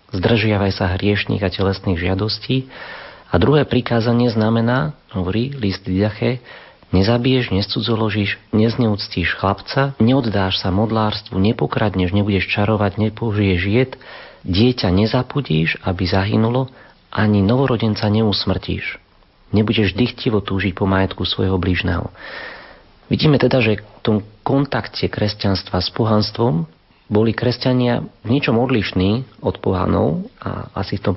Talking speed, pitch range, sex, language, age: 115 wpm, 95-115 Hz, male, Slovak, 40-59